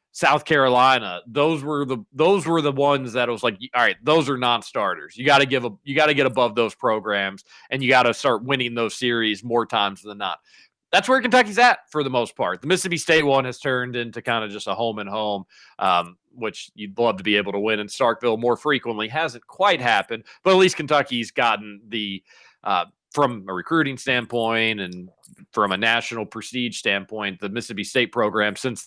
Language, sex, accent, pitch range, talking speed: English, male, American, 115-155 Hz, 210 wpm